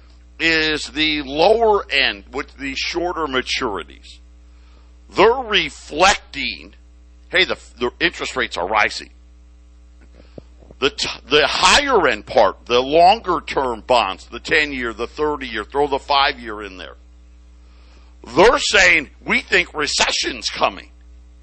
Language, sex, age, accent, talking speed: English, male, 50-69, American, 125 wpm